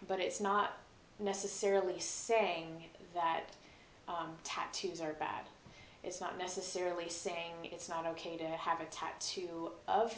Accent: American